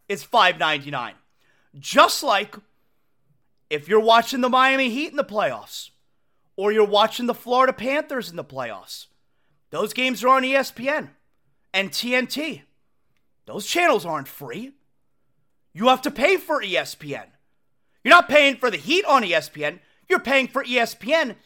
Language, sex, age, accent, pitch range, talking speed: English, male, 30-49, American, 230-310 Hz, 145 wpm